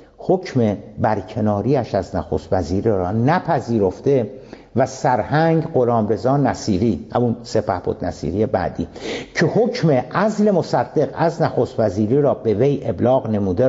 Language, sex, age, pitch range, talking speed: Persian, male, 60-79, 105-150 Hz, 125 wpm